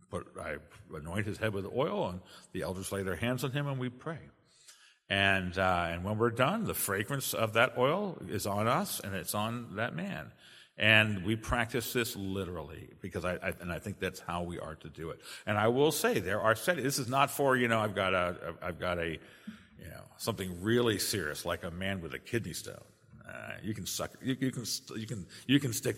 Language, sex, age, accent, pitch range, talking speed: English, male, 50-69, American, 95-125 Hz, 225 wpm